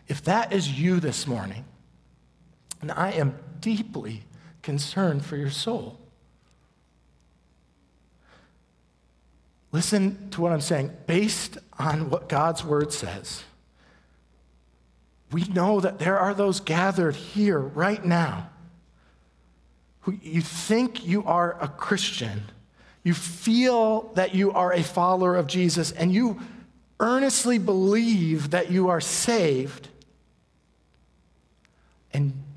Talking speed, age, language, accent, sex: 110 wpm, 50-69, English, American, male